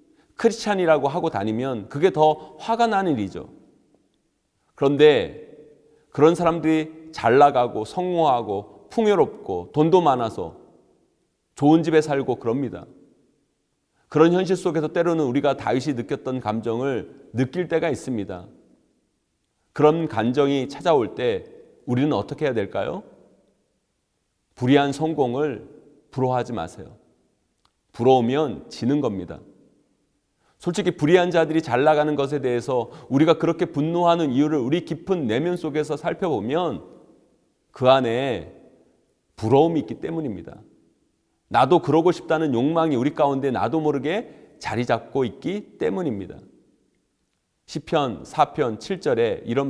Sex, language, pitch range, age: male, Korean, 125-165 Hz, 40-59